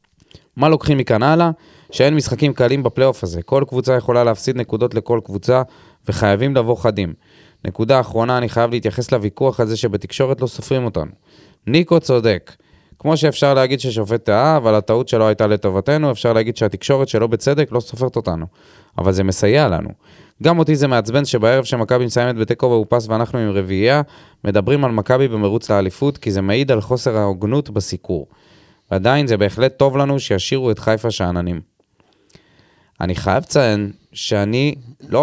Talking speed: 145 wpm